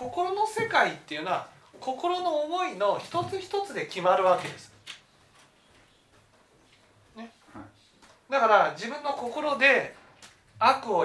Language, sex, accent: Japanese, male, native